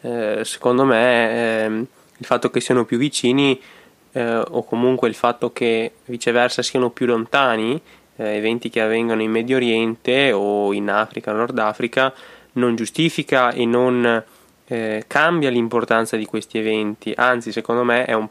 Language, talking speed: Italian, 150 wpm